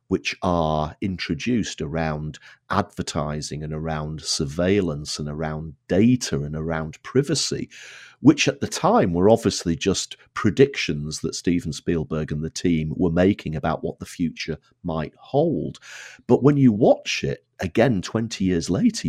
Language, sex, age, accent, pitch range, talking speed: English, male, 50-69, British, 80-110 Hz, 140 wpm